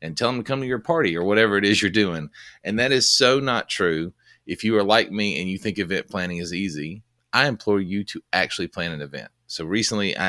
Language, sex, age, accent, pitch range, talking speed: English, male, 30-49, American, 85-100 Hz, 245 wpm